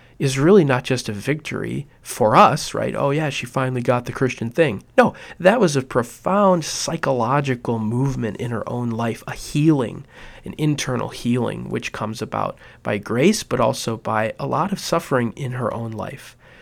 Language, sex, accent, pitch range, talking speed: English, male, American, 115-135 Hz, 175 wpm